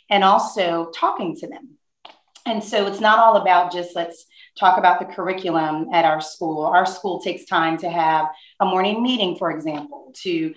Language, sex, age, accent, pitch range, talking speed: English, female, 30-49, American, 170-205 Hz, 180 wpm